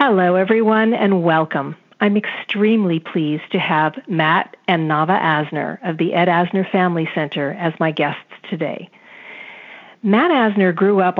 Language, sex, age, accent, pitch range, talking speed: English, female, 50-69, American, 170-215 Hz, 145 wpm